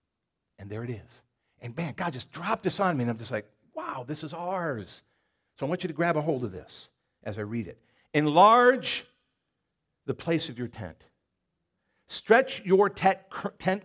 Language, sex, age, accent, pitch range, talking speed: English, male, 50-69, American, 120-190 Hz, 185 wpm